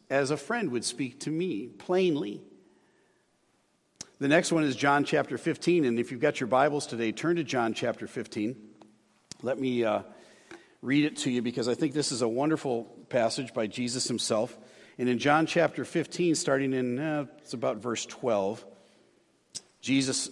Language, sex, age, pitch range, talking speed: English, male, 50-69, 120-155 Hz, 170 wpm